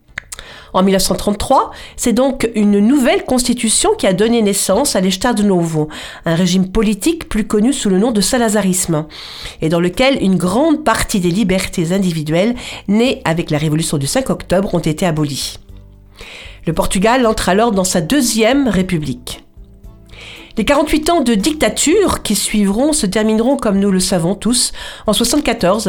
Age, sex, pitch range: 50-69, female, 180-235 Hz